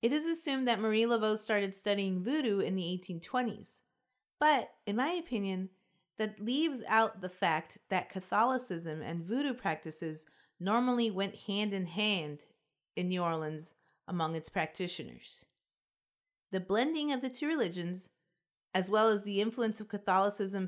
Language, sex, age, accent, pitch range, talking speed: English, female, 30-49, American, 180-230 Hz, 145 wpm